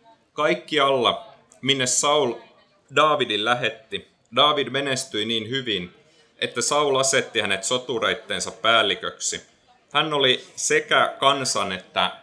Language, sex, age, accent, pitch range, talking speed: Finnish, male, 30-49, native, 110-155 Hz, 105 wpm